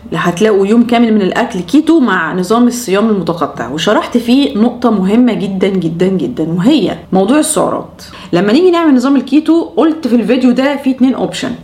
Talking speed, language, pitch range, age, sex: 165 wpm, Arabic, 205-275 Hz, 20-39, female